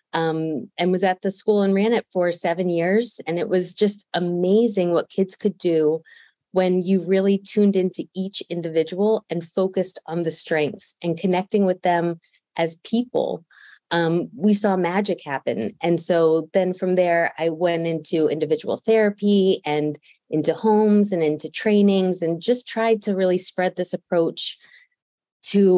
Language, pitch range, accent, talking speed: English, 165-205 Hz, American, 160 wpm